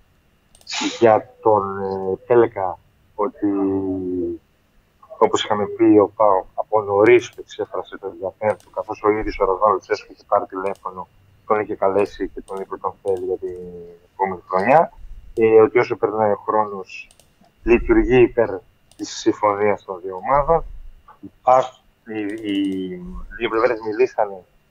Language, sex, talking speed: Greek, male, 130 wpm